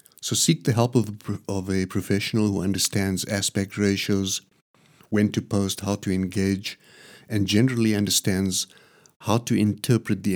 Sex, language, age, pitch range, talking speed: male, English, 50-69, 95-110 Hz, 140 wpm